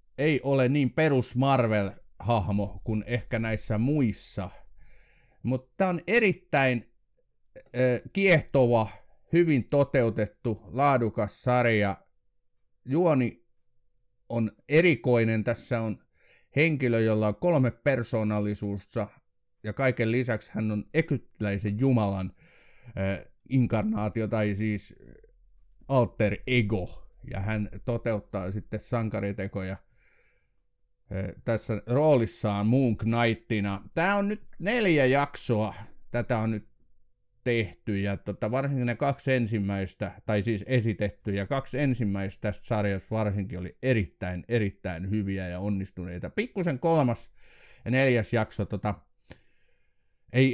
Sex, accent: male, native